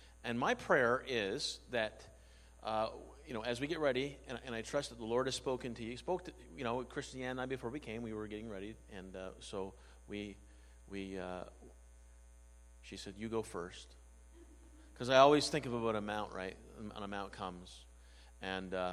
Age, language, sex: 40-59, English, male